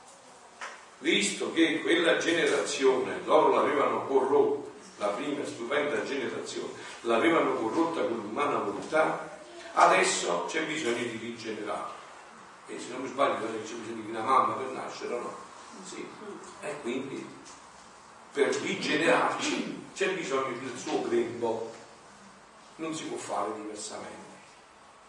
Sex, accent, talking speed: male, native, 120 wpm